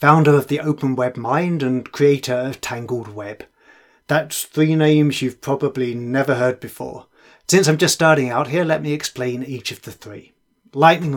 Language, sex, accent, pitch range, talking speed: English, male, British, 125-170 Hz, 175 wpm